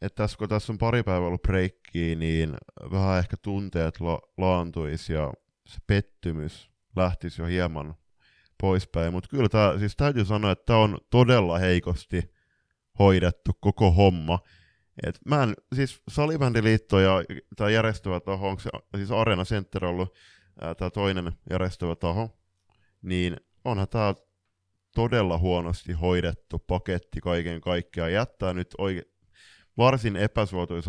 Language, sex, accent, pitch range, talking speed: Finnish, male, native, 90-105 Hz, 130 wpm